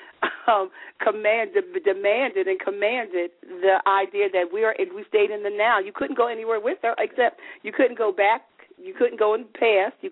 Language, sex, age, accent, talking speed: English, female, 40-59, American, 200 wpm